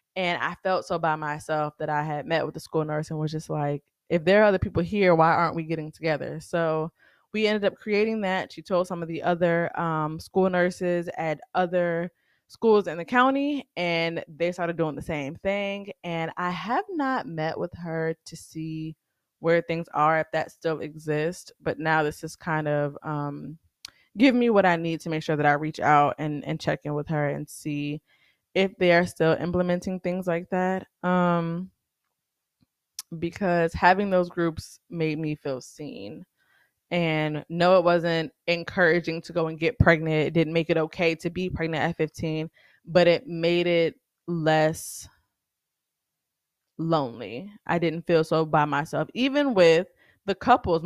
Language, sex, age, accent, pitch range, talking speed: English, female, 20-39, American, 155-180 Hz, 180 wpm